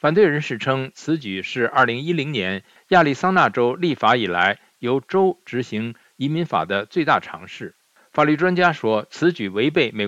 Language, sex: Chinese, male